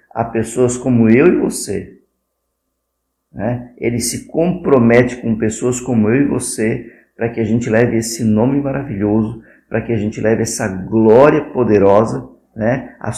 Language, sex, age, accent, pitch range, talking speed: Portuguese, male, 50-69, Brazilian, 110-135 Hz, 155 wpm